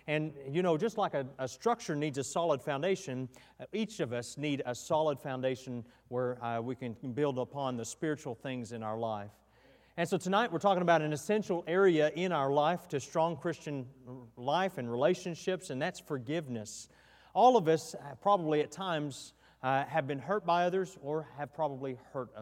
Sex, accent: male, American